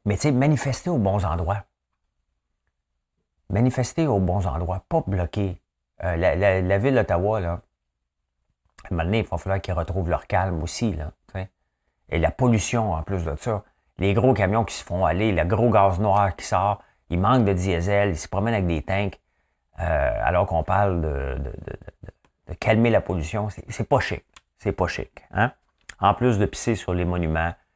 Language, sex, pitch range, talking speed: French, male, 75-105 Hz, 190 wpm